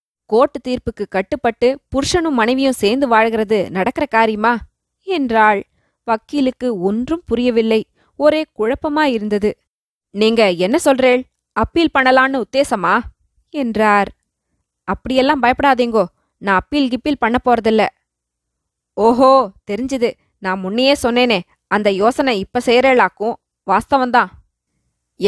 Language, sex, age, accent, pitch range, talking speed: Tamil, female, 20-39, native, 210-270 Hz, 95 wpm